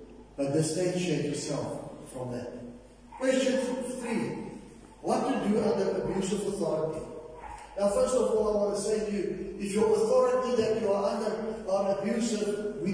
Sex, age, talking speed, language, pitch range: male, 30-49, 155 wpm, English, 165-220 Hz